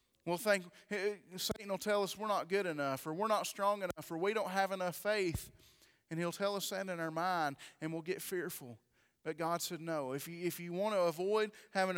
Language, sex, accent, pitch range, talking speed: English, male, American, 165-200 Hz, 225 wpm